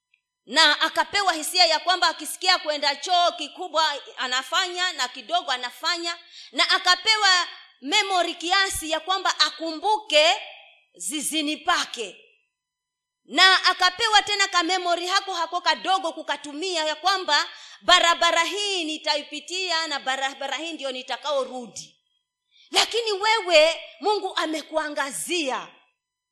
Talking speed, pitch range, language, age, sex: 100 wpm, 265-370 Hz, Swahili, 30-49, female